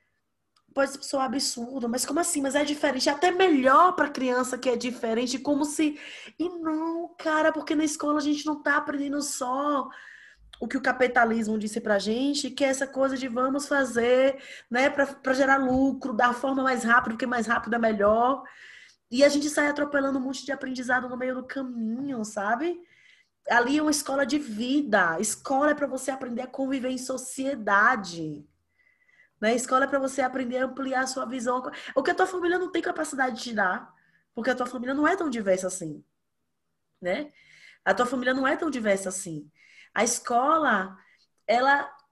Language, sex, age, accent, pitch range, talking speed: Portuguese, female, 20-39, Brazilian, 225-285 Hz, 185 wpm